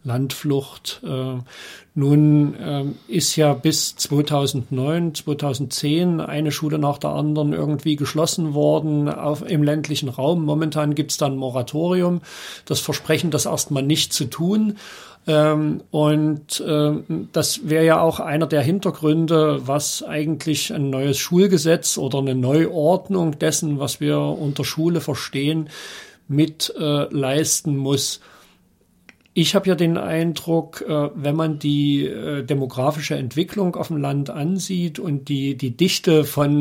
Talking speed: 125 wpm